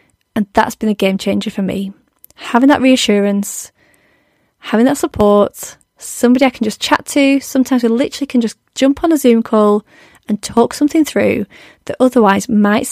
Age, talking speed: 30-49, 170 wpm